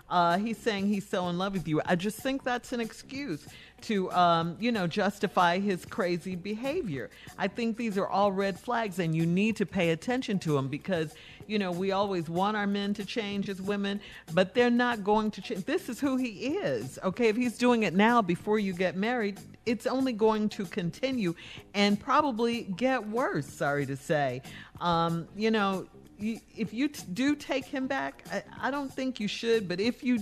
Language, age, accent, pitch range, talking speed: English, 50-69, American, 150-220 Hz, 200 wpm